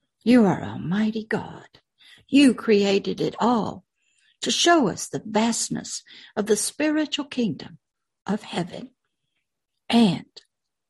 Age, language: 60-79, English